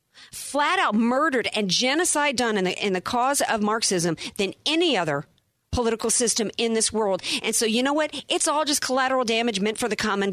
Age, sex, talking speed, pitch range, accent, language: 40-59, female, 205 wpm, 205-275 Hz, American, English